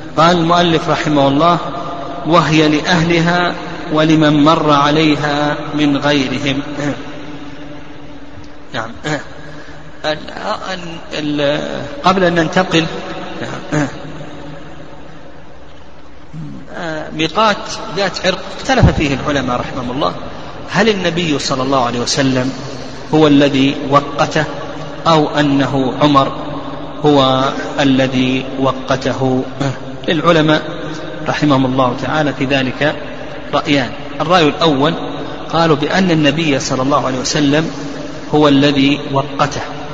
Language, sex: Arabic, male